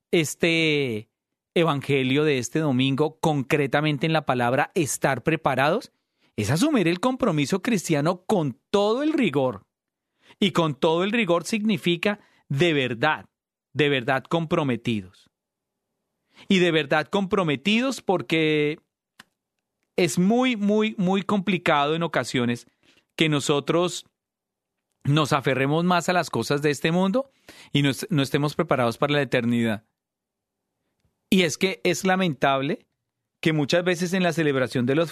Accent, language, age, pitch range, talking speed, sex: Colombian, Spanish, 40-59, 135-175 Hz, 125 wpm, male